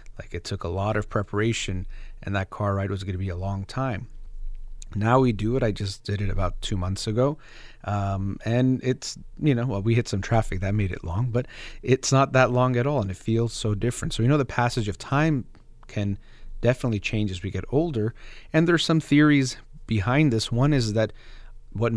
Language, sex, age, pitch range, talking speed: English, male, 30-49, 100-130 Hz, 220 wpm